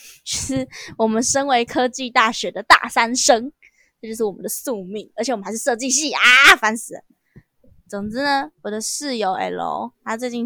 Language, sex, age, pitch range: Chinese, female, 10-29, 210-290 Hz